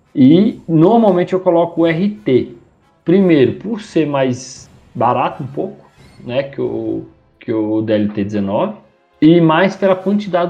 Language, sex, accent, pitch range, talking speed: Portuguese, male, Brazilian, 120-165 Hz, 125 wpm